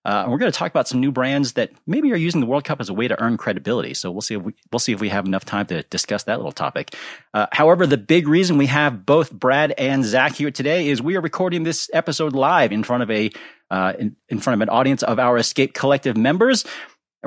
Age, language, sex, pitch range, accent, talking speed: 30-49, English, male, 115-160 Hz, American, 270 wpm